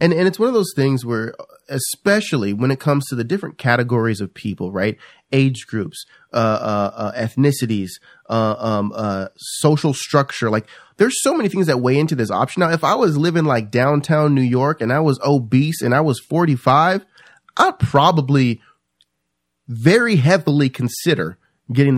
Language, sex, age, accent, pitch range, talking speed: English, male, 30-49, American, 115-160 Hz, 170 wpm